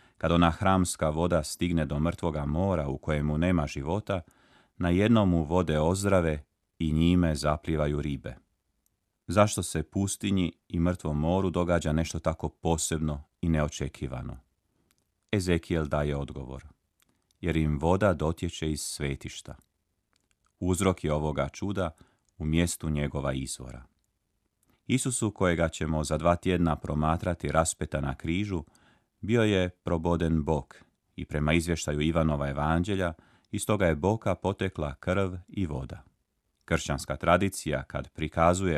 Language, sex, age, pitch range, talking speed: Croatian, male, 30-49, 75-90 Hz, 125 wpm